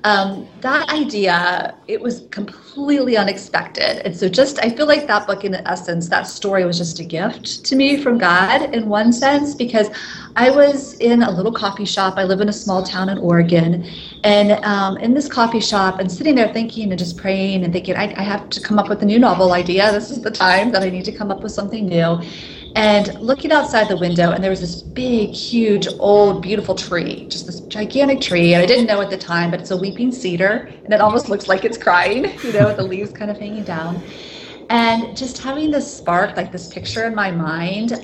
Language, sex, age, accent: English, female, 30-49, American